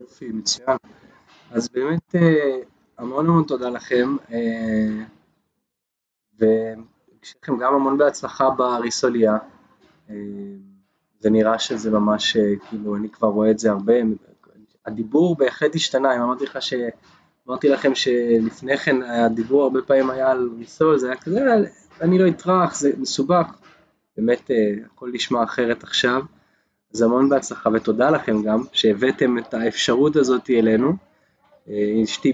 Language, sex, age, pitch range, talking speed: Hebrew, male, 20-39, 110-135 Hz, 115 wpm